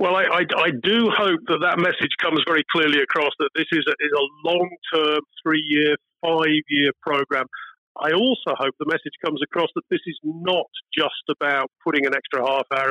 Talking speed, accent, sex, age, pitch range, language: 180 wpm, British, male, 50-69, 135-175 Hz, English